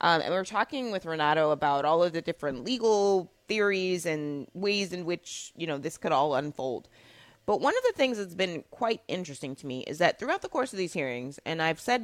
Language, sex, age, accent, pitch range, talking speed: English, female, 30-49, American, 145-185 Hz, 225 wpm